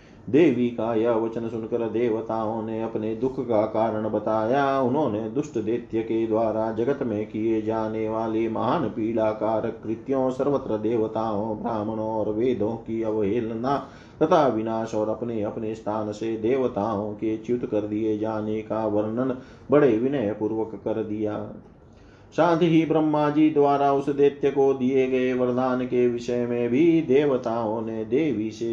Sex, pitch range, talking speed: male, 110-135 Hz, 150 wpm